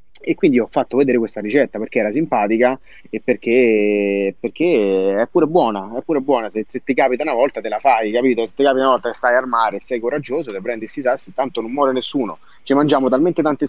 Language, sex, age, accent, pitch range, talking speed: Italian, male, 30-49, native, 110-130 Hz, 230 wpm